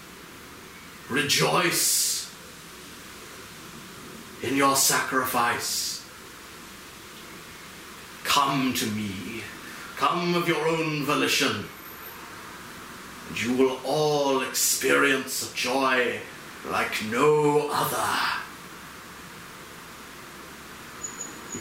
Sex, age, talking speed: male, 30-49, 65 wpm